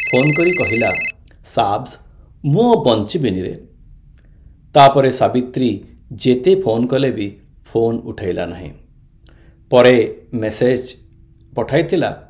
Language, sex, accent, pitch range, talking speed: Hindi, male, native, 90-140 Hz, 100 wpm